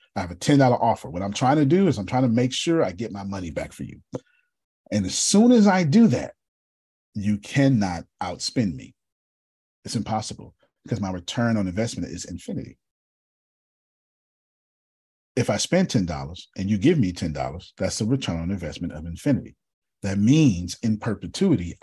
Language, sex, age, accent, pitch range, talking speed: English, male, 40-59, American, 90-130 Hz, 175 wpm